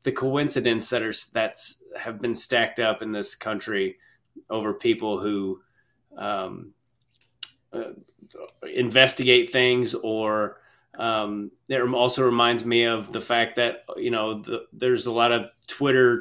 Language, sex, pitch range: English, male, 115-130 Hz